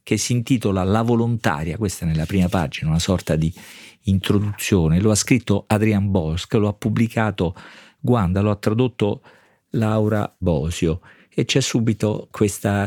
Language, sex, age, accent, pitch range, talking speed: Italian, male, 50-69, native, 100-120 Hz, 150 wpm